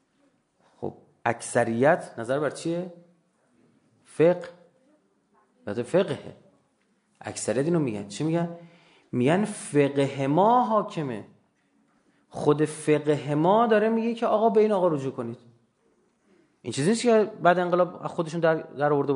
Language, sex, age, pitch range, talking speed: Persian, male, 30-49, 155-220 Hz, 115 wpm